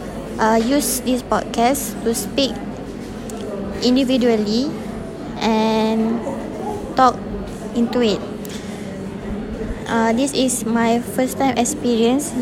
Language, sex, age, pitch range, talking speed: English, female, 20-39, 225-245 Hz, 85 wpm